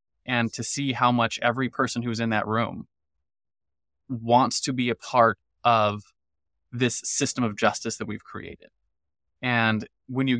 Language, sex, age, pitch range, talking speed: English, male, 20-39, 105-125 Hz, 155 wpm